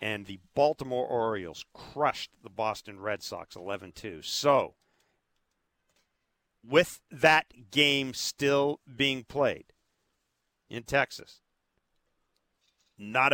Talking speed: 90 wpm